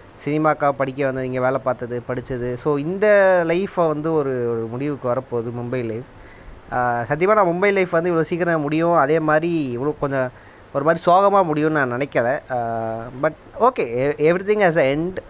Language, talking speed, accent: Tamil, 155 wpm, native